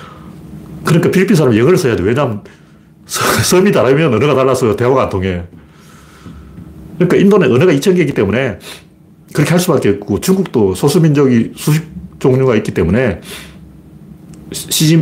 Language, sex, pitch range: Korean, male, 110-180 Hz